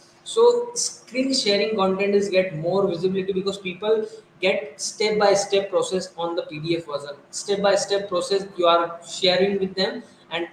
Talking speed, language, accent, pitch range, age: 140 wpm, English, Indian, 170-200 Hz, 20-39